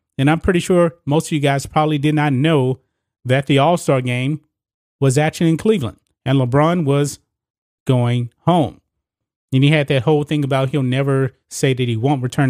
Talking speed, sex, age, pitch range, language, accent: 185 wpm, male, 30-49, 130-155 Hz, English, American